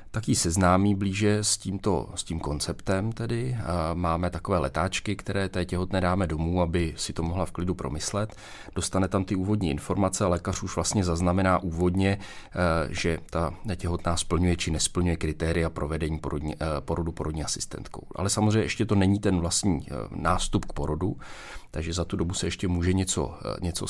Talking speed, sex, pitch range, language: 170 wpm, male, 85-100 Hz, Czech